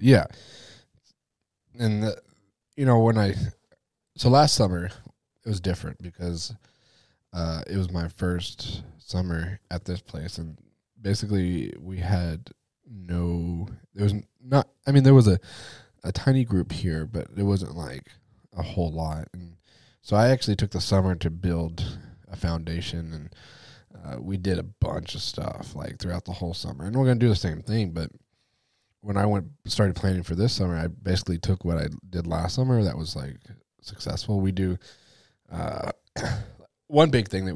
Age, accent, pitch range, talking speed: 20-39, American, 85-105 Hz, 170 wpm